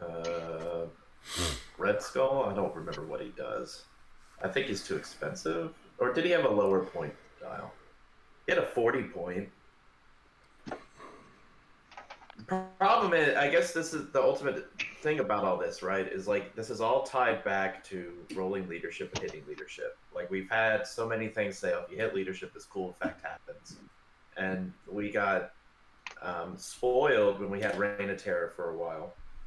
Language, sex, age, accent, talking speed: English, male, 30-49, American, 170 wpm